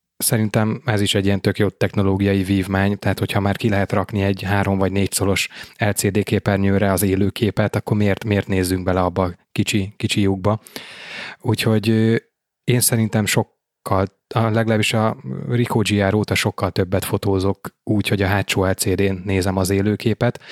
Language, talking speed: Hungarian, 150 wpm